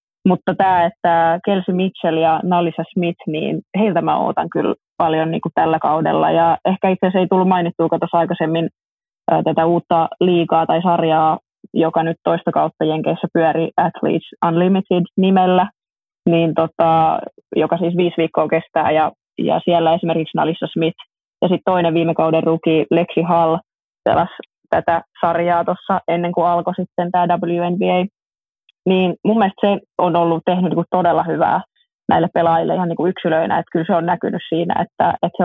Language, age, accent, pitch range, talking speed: Finnish, 20-39, native, 165-180 Hz, 170 wpm